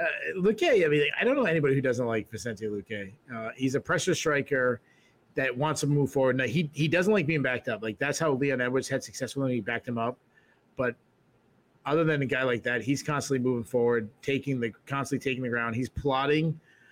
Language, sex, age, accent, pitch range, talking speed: English, male, 30-49, American, 120-140 Hz, 220 wpm